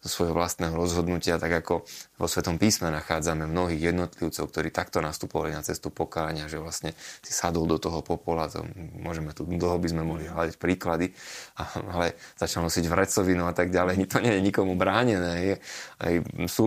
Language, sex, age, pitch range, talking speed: Slovak, male, 20-39, 85-100 Hz, 170 wpm